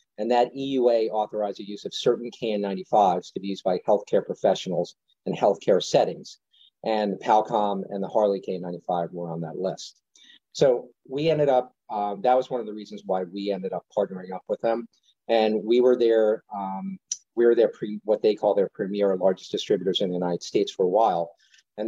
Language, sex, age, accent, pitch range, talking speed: English, male, 40-59, American, 100-120 Hz, 200 wpm